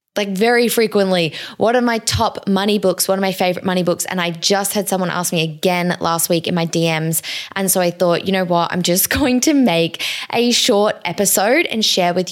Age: 10-29